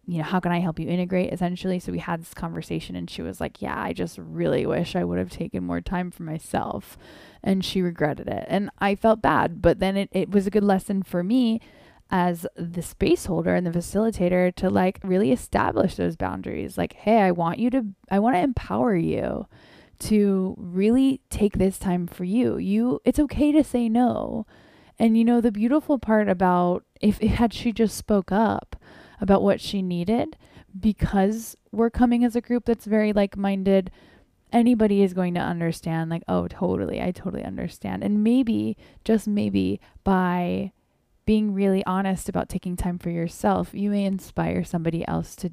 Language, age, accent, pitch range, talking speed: English, 10-29, American, 170-215 Hz, 190 wpm